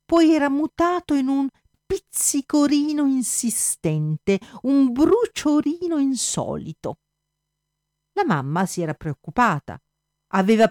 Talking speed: 90 wpm